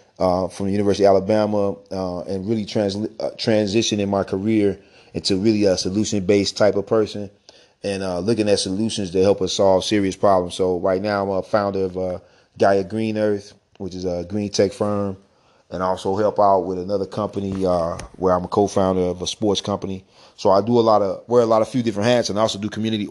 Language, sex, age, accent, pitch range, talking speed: English, male, 30-49, American, 95-110 Hz, 220 wpm